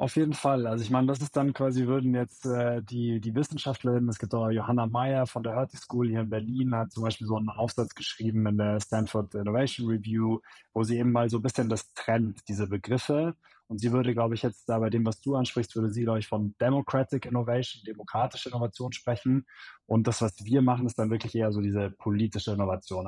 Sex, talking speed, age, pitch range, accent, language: male, 225 wpm, 20-39, 110-125 Hz, German, German